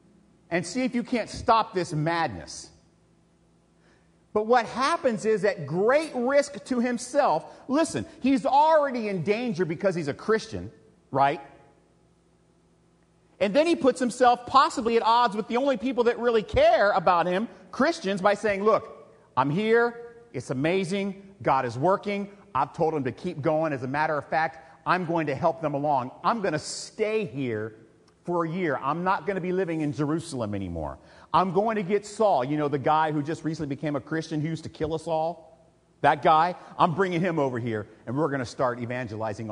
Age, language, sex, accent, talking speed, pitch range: 40-59, English, male, American, 185 wpm, 150-235 Hz